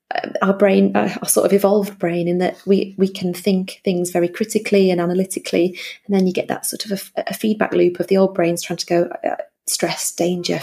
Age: 30-49